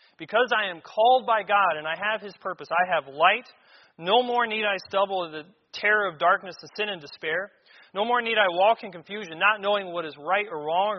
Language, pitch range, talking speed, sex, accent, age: English, 145-190 Hz, 230 wpm, male, American, 30-49